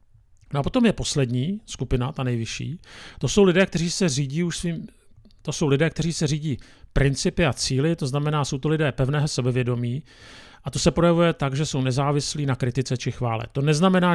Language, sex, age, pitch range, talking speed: Czech, male, 40-59, 115-150 Hz, 195 wpm